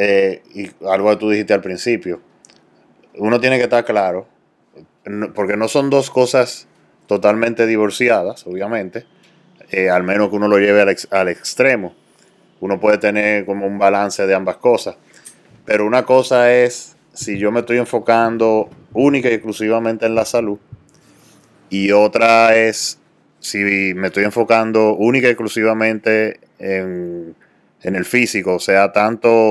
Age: 30-49